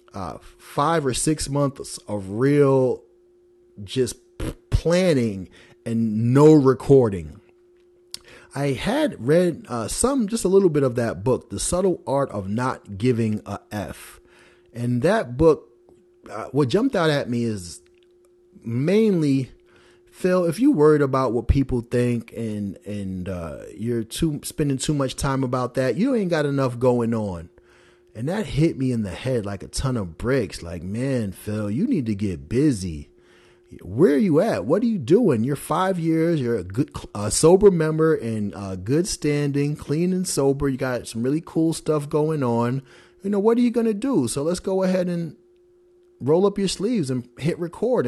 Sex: male